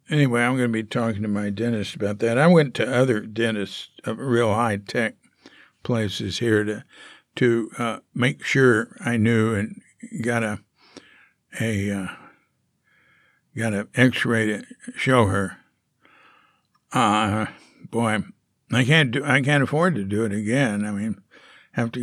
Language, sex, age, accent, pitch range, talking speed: English, male, 60-79, American, 110-140 Hz, 150 wpm